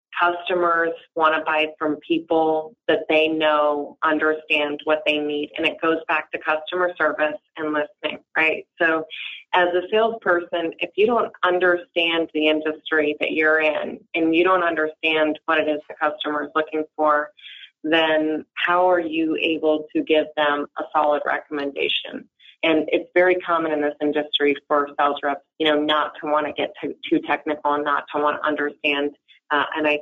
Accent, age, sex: American, 30-49, female